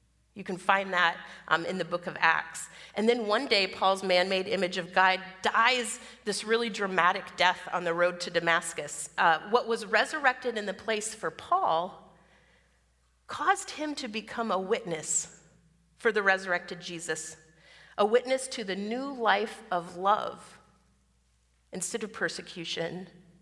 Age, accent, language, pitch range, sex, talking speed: 30-49, American, English, 175-225 Hz, female, 150 wpm